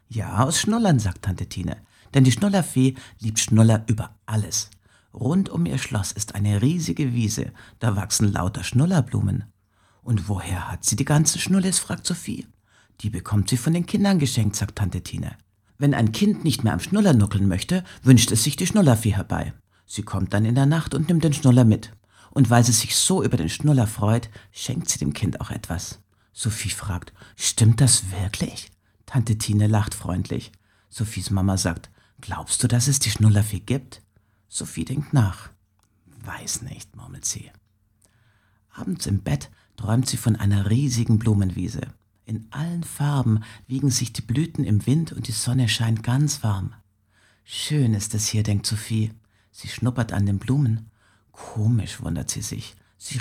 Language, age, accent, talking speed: German, 60-79, German, 170 wpm